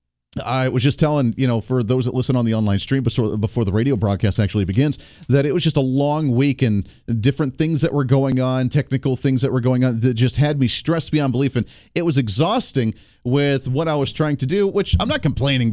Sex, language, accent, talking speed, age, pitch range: male, English, American, 240 wpm, 40-59, 115-155 Hz